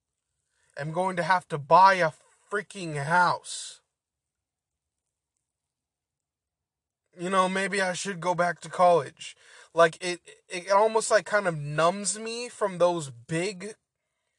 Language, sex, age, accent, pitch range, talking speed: English, male, 20-39, American, 155-200 Hz, 125 wpm